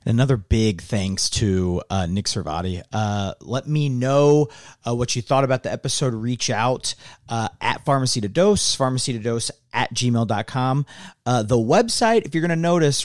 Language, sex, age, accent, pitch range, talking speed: English, male, 40-59, American, 105-135 Hz, 165 wpm